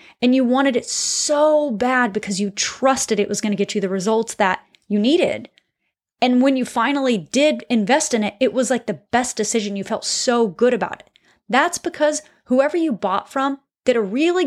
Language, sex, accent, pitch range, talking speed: English, female, American, 205-270 Hz, 205 wpm